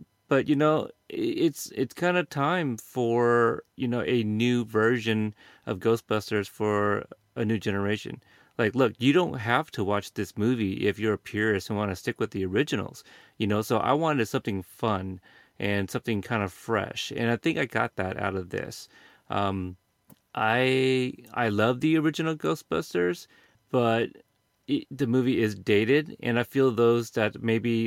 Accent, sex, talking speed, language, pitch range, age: American, male, 170 wpm, English, 105-125 Hz, 30-49